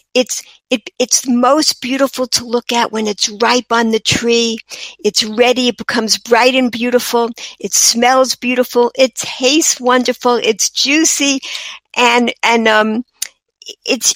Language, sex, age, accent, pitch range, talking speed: English, female, 60-79, American, 225-270 Hz, 140 wpm